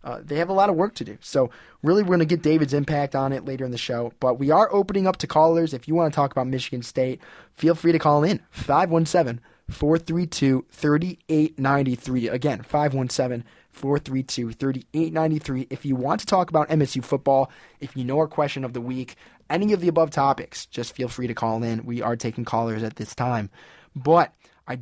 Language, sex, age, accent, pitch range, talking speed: English, male, 20-39, American, 125-160 Hz, 200 wpm